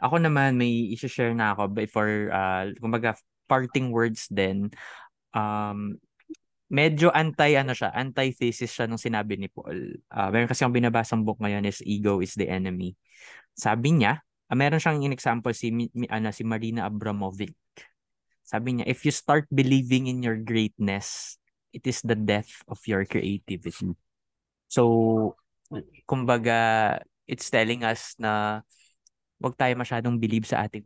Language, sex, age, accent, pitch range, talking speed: Filipino, male, 20-39, native, 100-125 Hz, 150 wpm